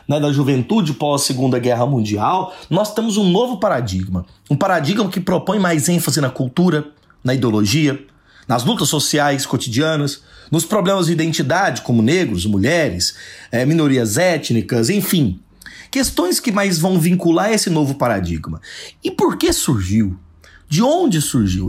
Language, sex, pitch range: Portuguese, male, 140-185 Hz